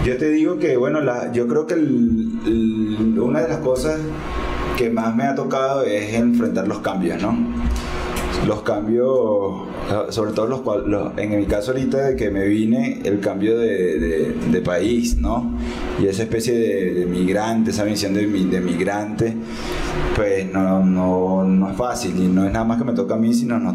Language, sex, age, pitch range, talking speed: Spanish, male, 20-39, 100-120 Hz, 190 wpm